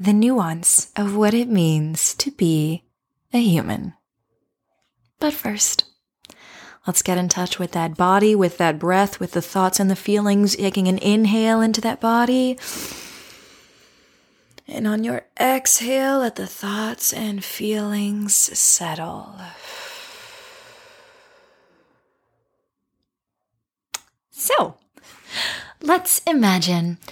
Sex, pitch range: female, 185-270 Hz